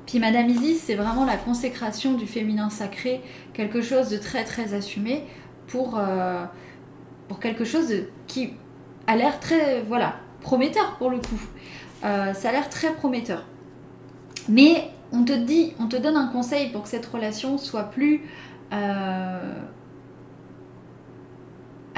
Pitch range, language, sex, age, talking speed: 210-265 Hz, French, female, 20-39, 145 wpm